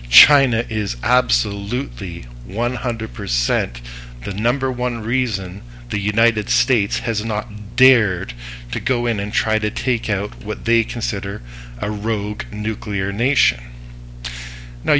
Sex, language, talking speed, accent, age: male, English, 120 wpm, American, 50-69